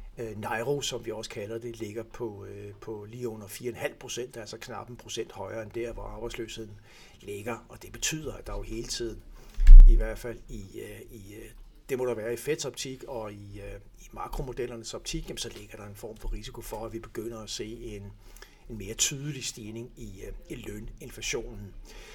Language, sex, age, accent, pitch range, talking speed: Danish, male, 60-79, native, 110-120 Hz, 180 wpm